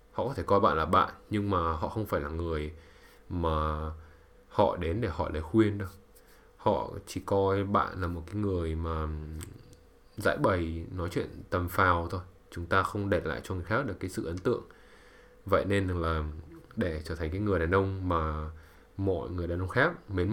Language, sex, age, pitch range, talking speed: English, male, 20-39, 80-100 Hz, 200 wpm